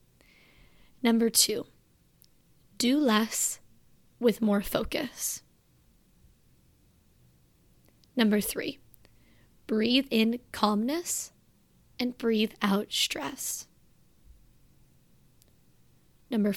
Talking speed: 60 wpm